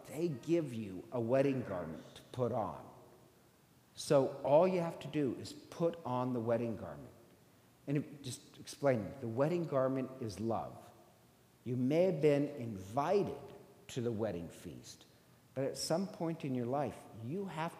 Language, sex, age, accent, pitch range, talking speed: English, male, 50-69, American, 115-150 Hz, 160 wpm